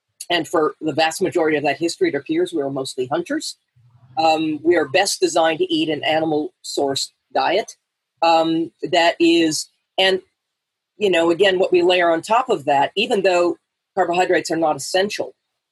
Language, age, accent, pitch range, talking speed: English, 40-59, American, 145-180 Hz, 170 wpm